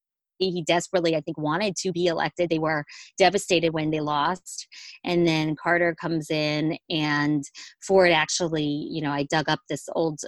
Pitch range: 155-180 Hz